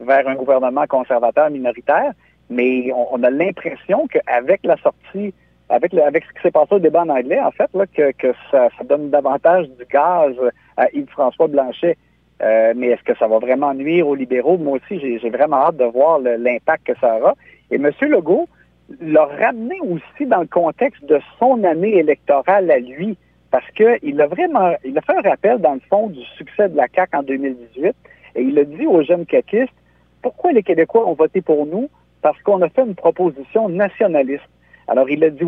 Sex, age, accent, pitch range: male, 50-69, Canadian, 135-195 Hz